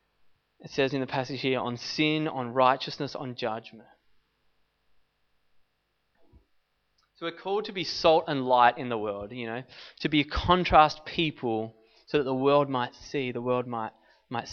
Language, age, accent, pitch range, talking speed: English, 20-39, Australian, 120-150 Hz, 165 wpm